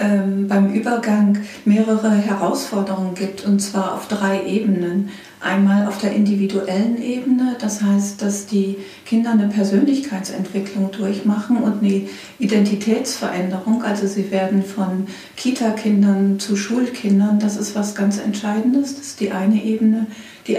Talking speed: 130 wpm